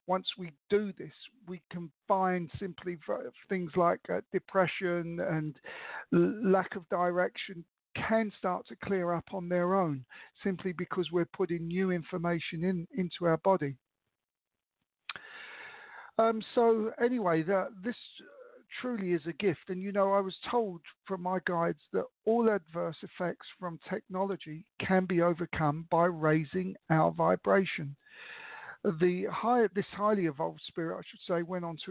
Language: English